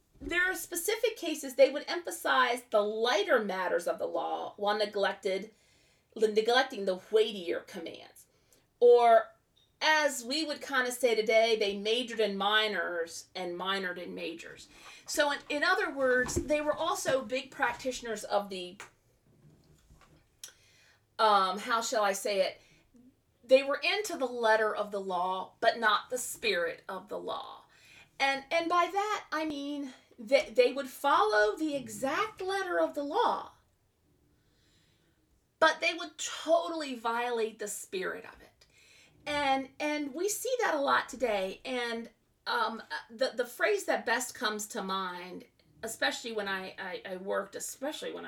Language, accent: English, American